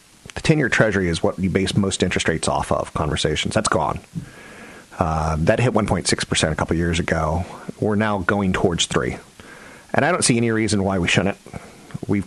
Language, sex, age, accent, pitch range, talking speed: English, male, 40-59, American, 95-125 Hz, 190 wpm